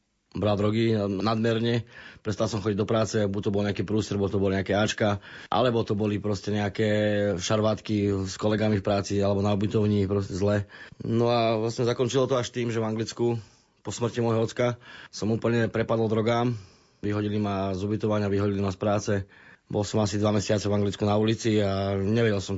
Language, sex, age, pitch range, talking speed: Slovak, male, 20-39, 100-115 Hz, 185 wpm